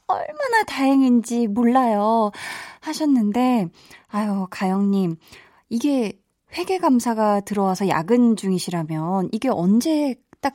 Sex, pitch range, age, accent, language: female, 195-275 Hz, 20-39, native, Korean